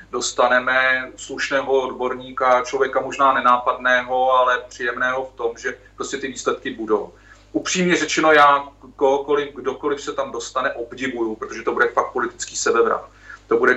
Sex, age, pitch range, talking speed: male, 30-49, 120-145 Hz, 135 wpm